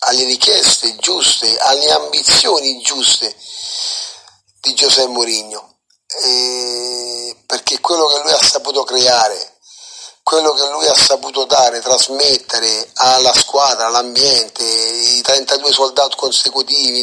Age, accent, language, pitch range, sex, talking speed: 40-59, native, Italian, 125-140 Hz, male, 105 wpm